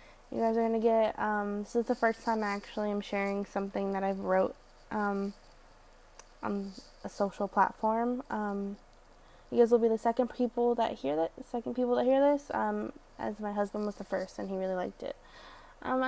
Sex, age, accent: female, 10-29, American